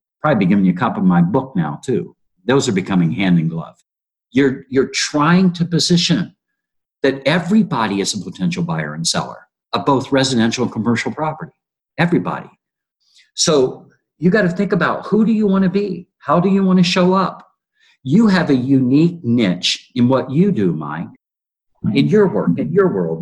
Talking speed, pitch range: 185 wpm, 125-180 Hz